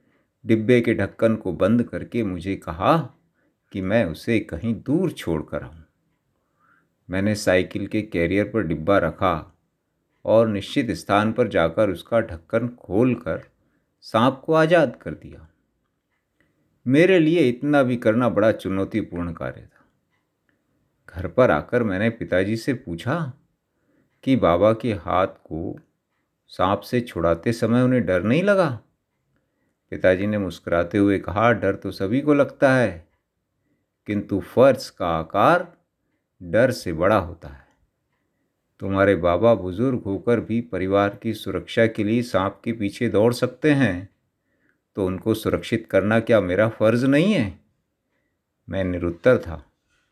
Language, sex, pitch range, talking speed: Hindi, male, 90-120 Hz, 135 wpm